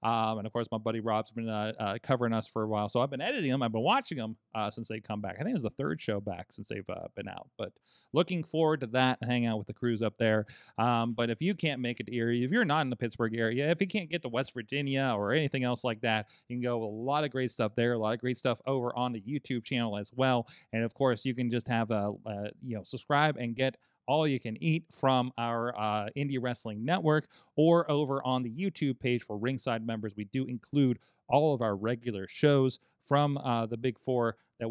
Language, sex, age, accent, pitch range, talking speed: English, male, 30-49, American, 115-155 Hz, 260 wpm